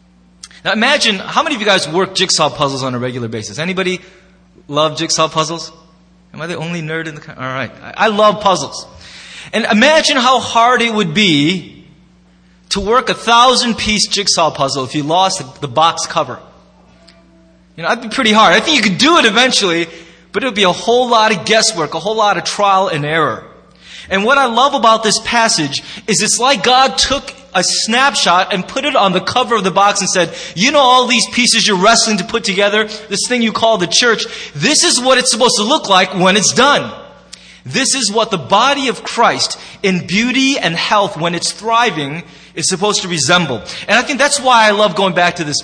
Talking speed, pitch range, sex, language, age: 215 wpm, 170-235 Hz, male, English, 20-39